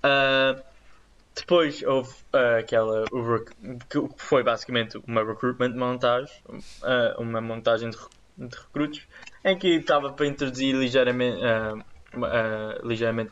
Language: Portuguese